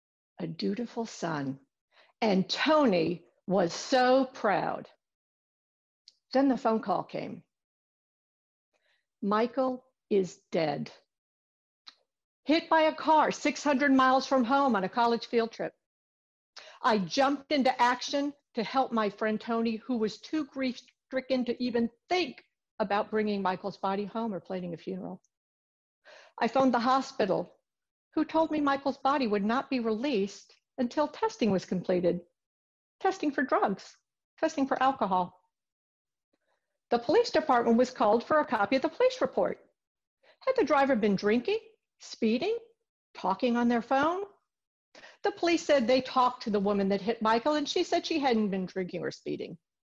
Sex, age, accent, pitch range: female, 60-79, American, 210-290 Hz